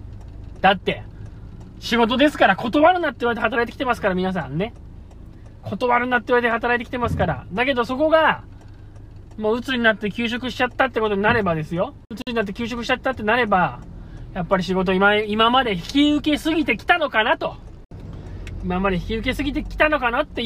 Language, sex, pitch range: Japanese, male, 190-275 Hz